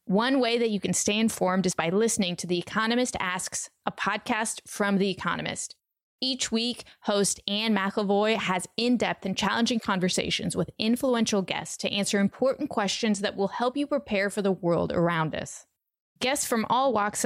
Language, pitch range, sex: English, 195-240 Hz, female